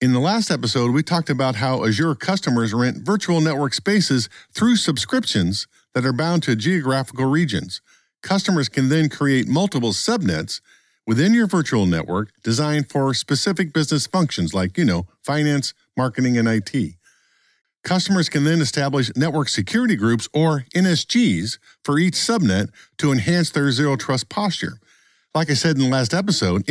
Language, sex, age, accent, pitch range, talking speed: English, male, 50-69, American, 120-170 Hz, 155 wpm